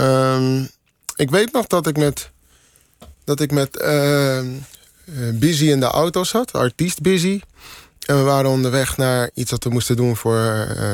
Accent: Dutch